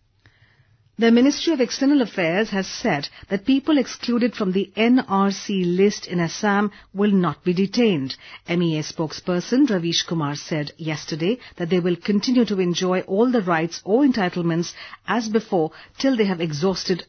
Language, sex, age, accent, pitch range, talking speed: English, female, 50-69, Indian, 160-210 Hz, 150 wpm